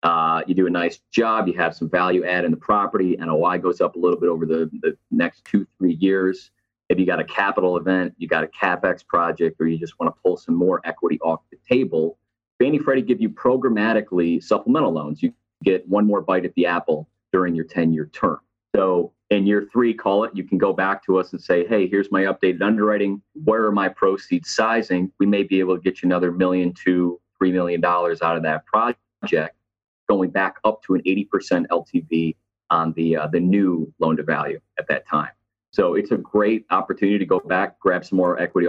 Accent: American